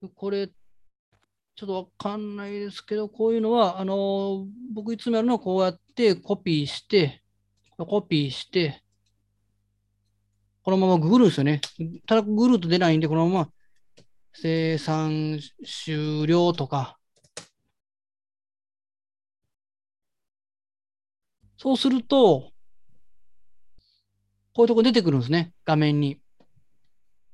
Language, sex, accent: Japanese, male, native